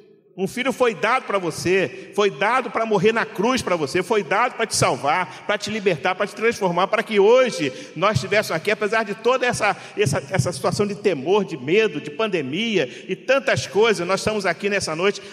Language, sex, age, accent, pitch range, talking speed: Portuguese, male, 50-69, Brazilian, 155-210 Hz, 205 wpm